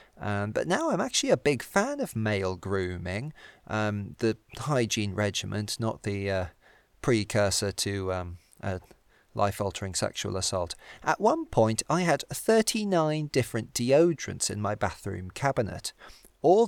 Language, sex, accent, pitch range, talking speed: English, male, British, 100-135 Hz, 140 wpm